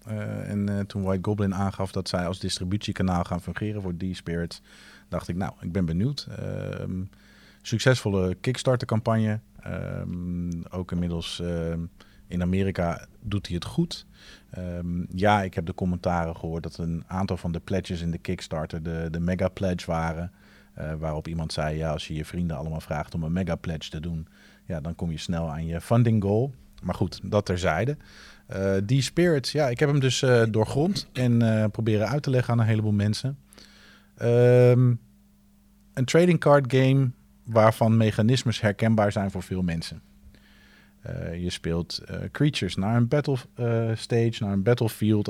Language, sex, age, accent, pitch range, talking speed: Dutch, male, 40-59, Dutch, 90-115 Hz, 170 wpm